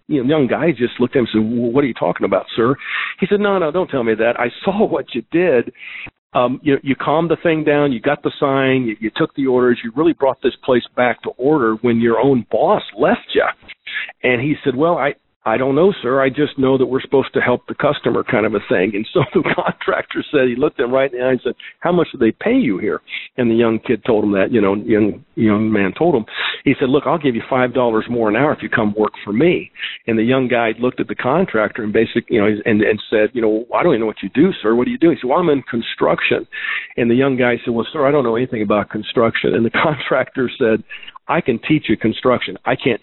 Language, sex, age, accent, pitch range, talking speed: English, male, 50-69, American, 115-155 Hz, 270 wpm